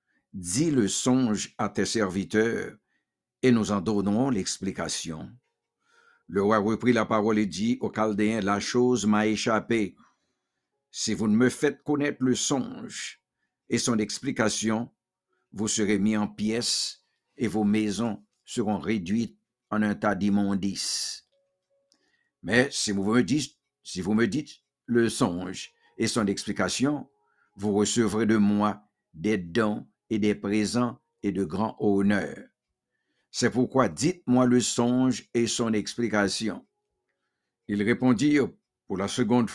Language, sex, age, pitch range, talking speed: English, male, 60-79, 105-125 Hz, 135 wpm